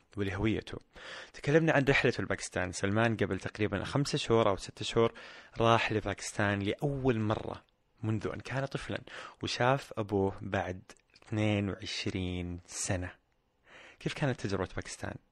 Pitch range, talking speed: 95-115 Hz, 120 wpm